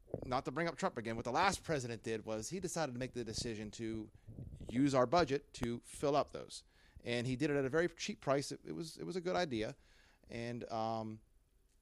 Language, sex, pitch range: English, male, 115-170 Hz